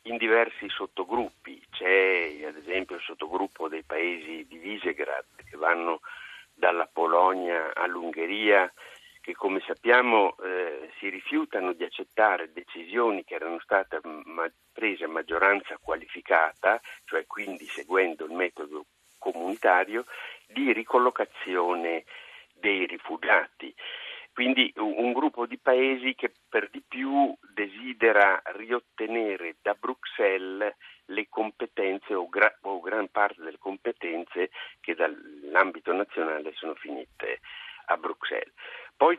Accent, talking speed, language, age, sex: native, 110 wpm, Italian, 50-69, male